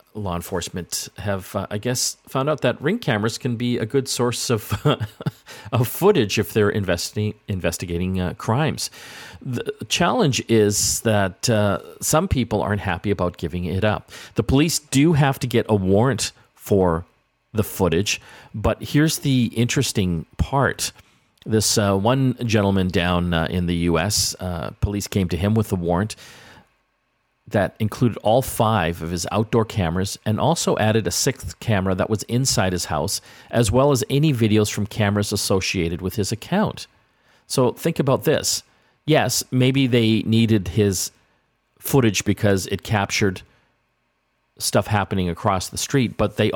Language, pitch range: English, 95-120 Hz